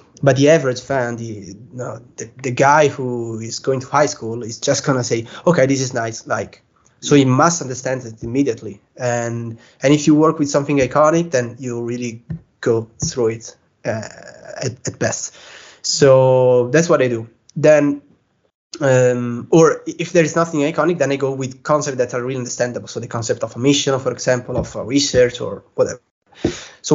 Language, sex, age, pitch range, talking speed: English, male, 20-39, 120-145 Hz, 190 wpm